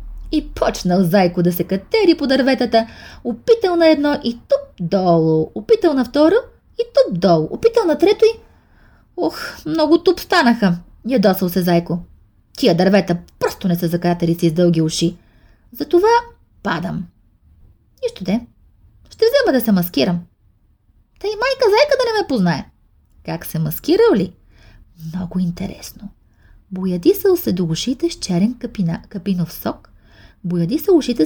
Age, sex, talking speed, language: 20-39, female, 145 wpm, English